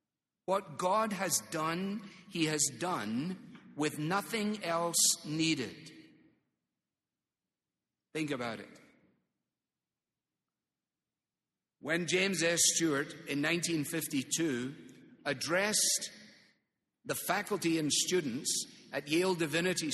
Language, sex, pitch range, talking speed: English, male, 155-195 Hz, 85 wpm